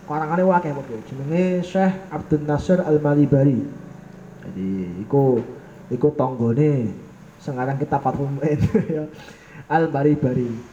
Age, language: 20-39, Indonesian